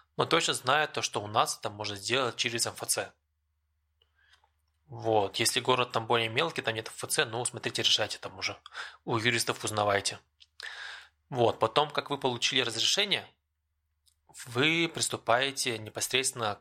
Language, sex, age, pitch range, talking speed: English, male, 20-39, 80-125 Hz, 135 wpm